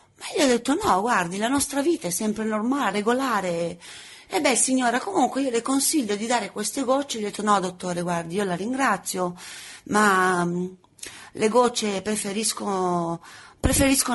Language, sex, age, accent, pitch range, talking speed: Italian, female, 30-49, native, 190-245 Hz, 165 wpm